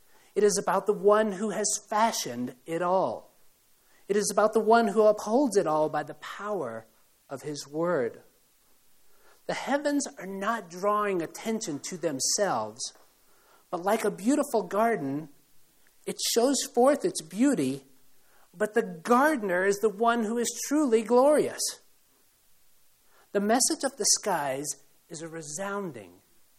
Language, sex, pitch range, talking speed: English, male, 170-230 Hz, 140 wpm